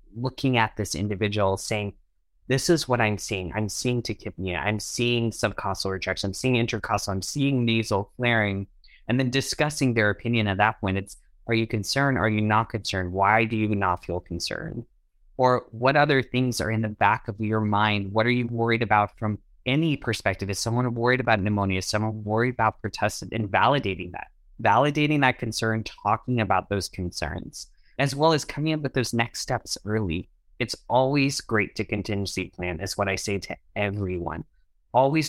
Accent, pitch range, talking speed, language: American, 100-120 Hz, 180 wpm, English